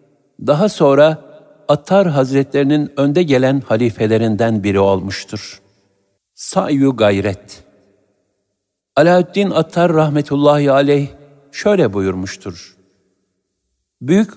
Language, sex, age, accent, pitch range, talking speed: Turkish, male, 60-79, native, 105-155 Hz, 75 wpm